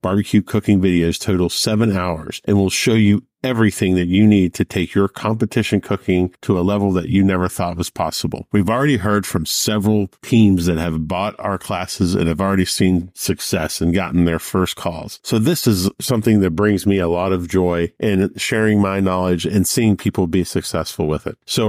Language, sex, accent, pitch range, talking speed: English, male, American, 95-110 Hz, 200 wpm